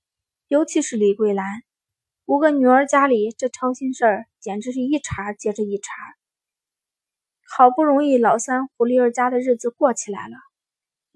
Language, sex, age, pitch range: Chinese, female, 20-39, 220-275 Hz